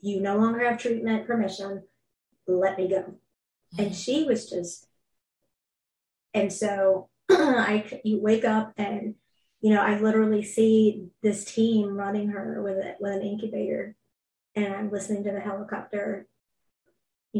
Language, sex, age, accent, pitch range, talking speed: English, female, 20-39, American, 195-215 Hz, 135 wpm